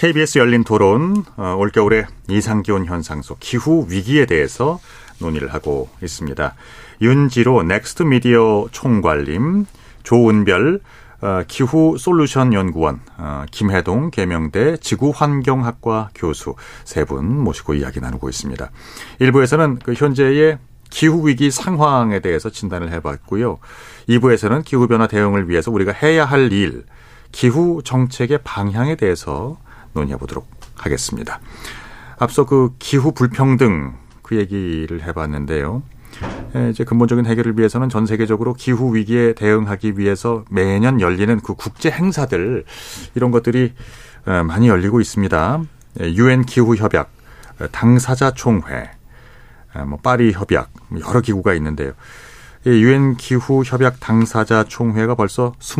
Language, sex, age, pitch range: Korean, male, 40-59, 100-130 Hz